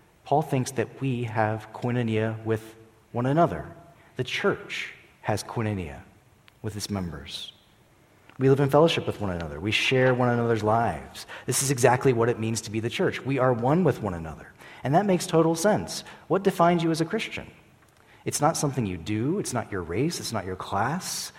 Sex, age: male, 40-59